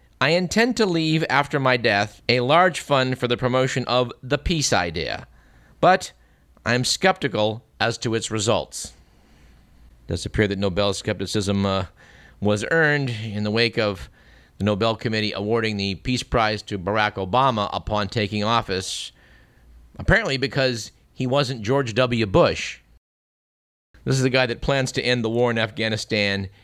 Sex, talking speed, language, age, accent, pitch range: male, 160 wpm, English, 50-69, American, 95-130 Hz